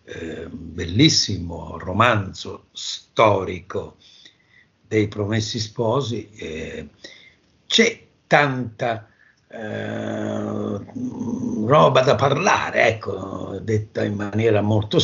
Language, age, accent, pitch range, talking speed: Italian, 60-79, native, 100-125 Hz, 70 wpm